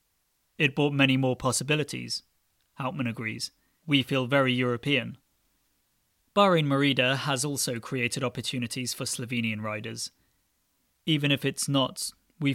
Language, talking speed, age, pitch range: English, 120 wpm, 30-49, 120-140 Hz